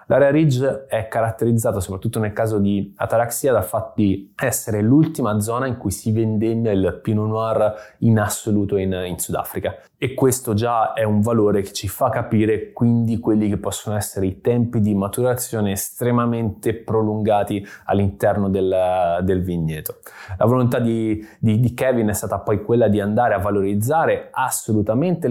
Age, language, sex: 20-39, Italian, male